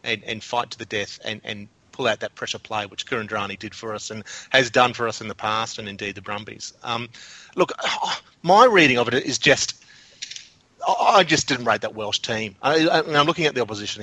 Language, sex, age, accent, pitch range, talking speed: English, male, 30-49, Australian, 110-130 Hz, 220 wpm